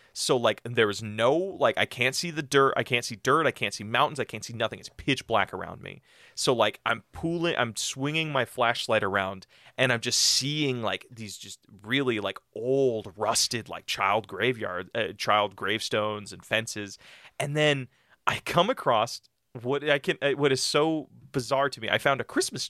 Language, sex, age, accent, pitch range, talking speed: English, male, 30-49, American, 110-135 Hz, 195 wpm